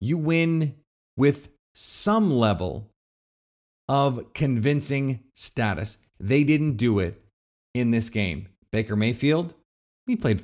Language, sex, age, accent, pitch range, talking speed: English, male, 30-49, American, 110-170 Hz, 110 wpm